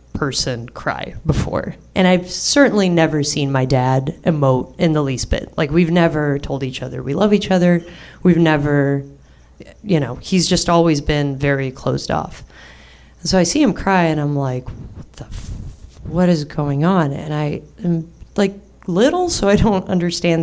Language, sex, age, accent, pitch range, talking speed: English, female, 30-49, American, 135-185 Hz, 170 wpm